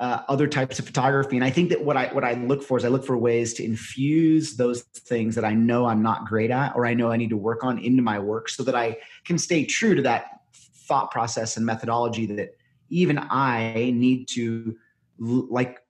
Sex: male